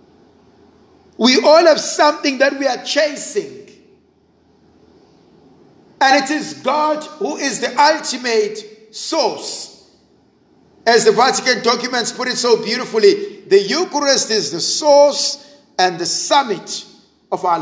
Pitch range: 210-310 Hz